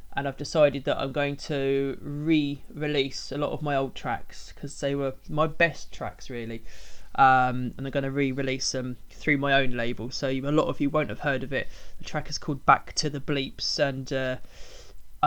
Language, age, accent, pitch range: English, 20-39, British, 135-165 Hz